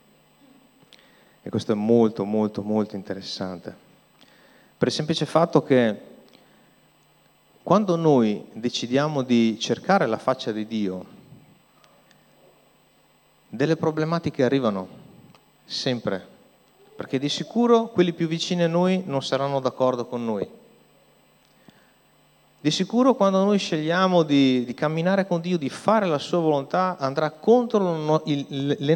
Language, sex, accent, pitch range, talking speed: Italian, male, native, 115-170 Hz, 115 wpm